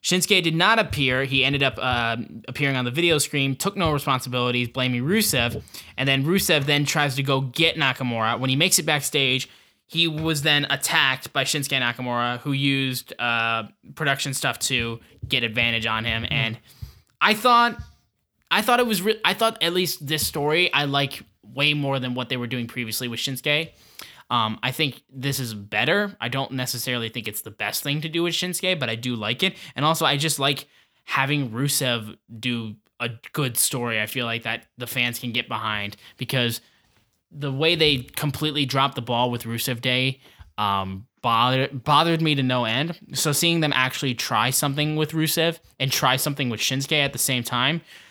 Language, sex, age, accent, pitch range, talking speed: English, male, 10-29, American, 120-150 Hz, 190 wpm